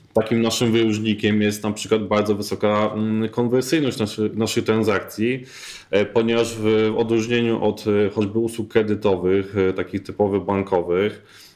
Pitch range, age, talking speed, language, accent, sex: 100-115 Hz, 20-39, 115 wpm, Polish, native, male